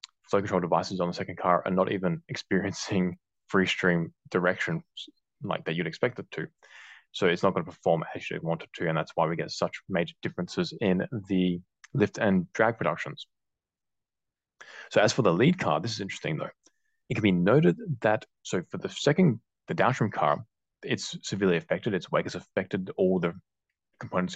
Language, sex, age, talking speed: English, male, 20-39, 190 wpm